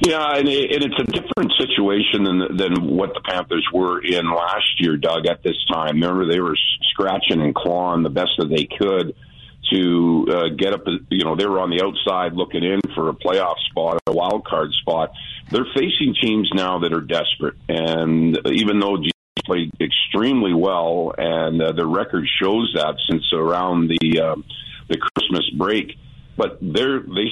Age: 50-69